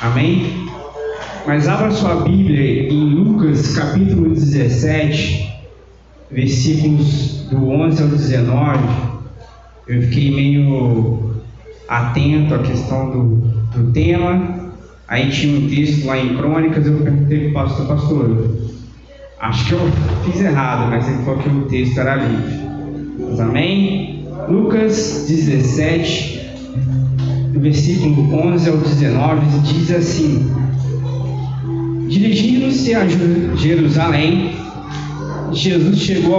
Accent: Brazilian